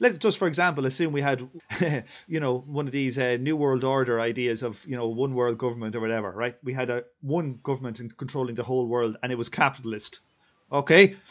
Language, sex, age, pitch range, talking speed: English, male, 30-49, 125-170 Hz, 205 wpm